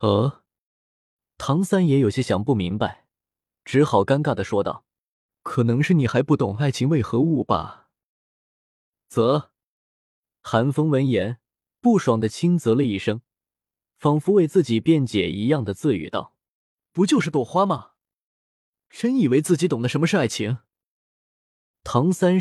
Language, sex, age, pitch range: Chinese, male, 20-39, 110-155 Hz